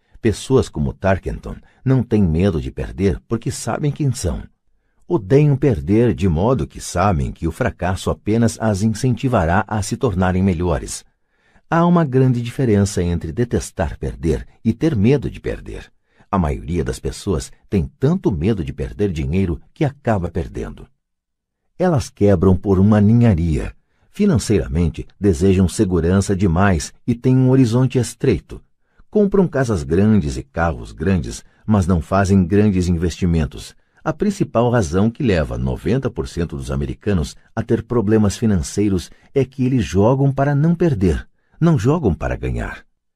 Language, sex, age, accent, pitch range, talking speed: Portuguese, male, 60-79, Brazilian, 85-120 Hz, 140 wpm